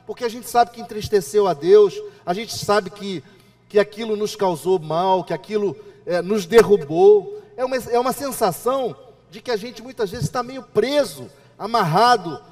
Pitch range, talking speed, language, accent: 185-235 Hz, 170 wpm, Portuguese, Brazilian